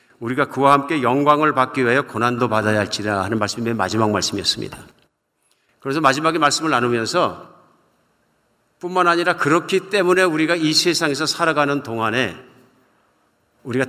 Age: 50-69